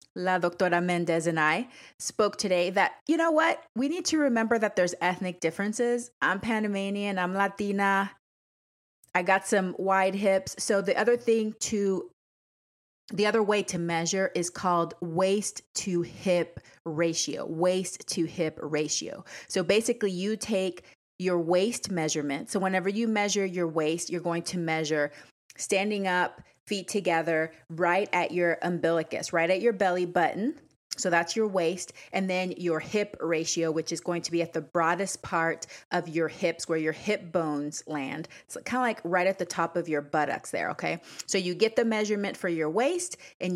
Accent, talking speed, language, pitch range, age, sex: American, 175 wpm, English, 170-205 Hz, 30-49, female